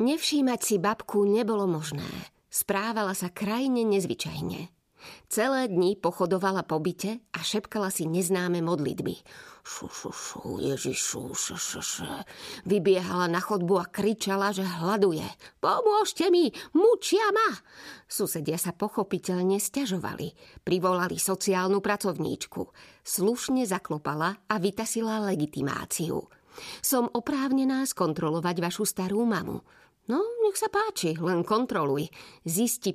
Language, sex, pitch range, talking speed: Slovak, female, 180-235 Hz, 105 wpm